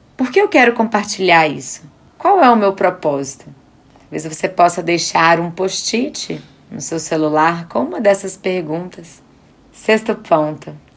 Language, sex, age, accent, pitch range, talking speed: Portuguese, female, 20-39, Brazilian, 165-205 Hz, 140 wpm